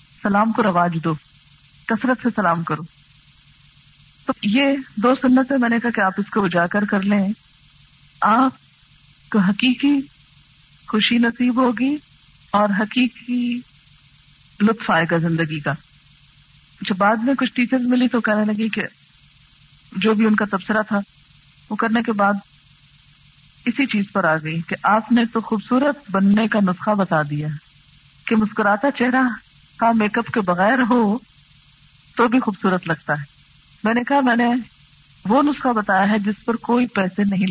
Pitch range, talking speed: 145-235 Hz, 160 wpm